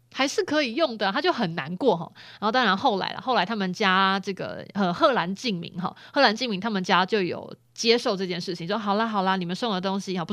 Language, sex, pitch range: Chinese, female, 185-240 Hz